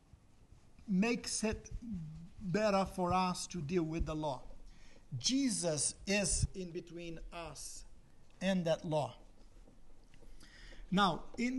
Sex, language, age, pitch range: male, English, 50-69, 165-205 Hz